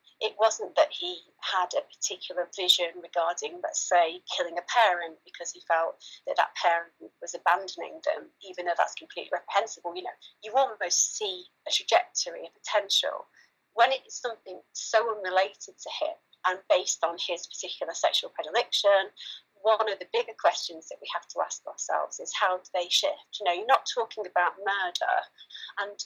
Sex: female